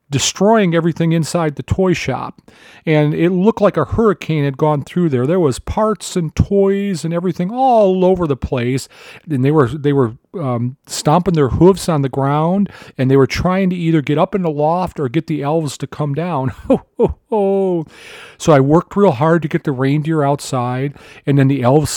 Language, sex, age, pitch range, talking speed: English, male, 40-59, 135-175 Hz, 195 wpm